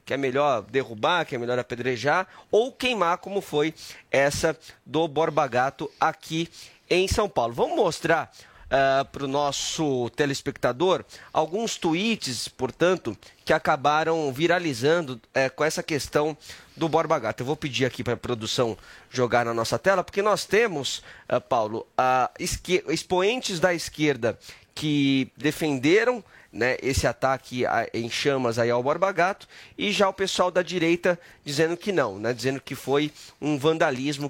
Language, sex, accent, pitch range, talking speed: Portuguese, male, Brazilian, 135-170 Hz, 150 wpm